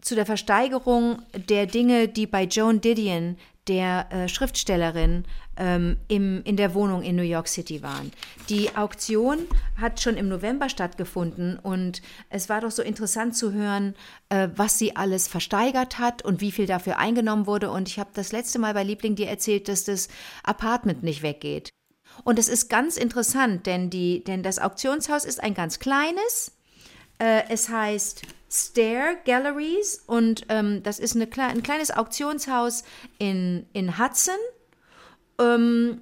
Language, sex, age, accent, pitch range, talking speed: German, female, 50-69, German, 195-240 Hz, 155 wpm